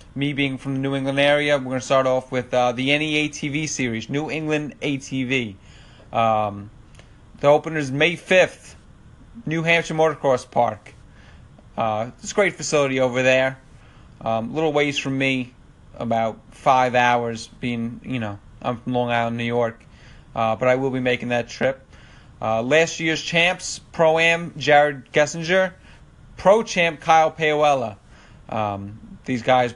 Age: 30-49